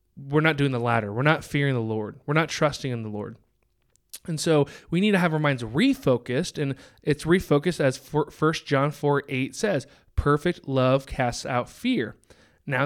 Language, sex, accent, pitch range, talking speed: English, male, American, 125-160 Hz, 185 wpm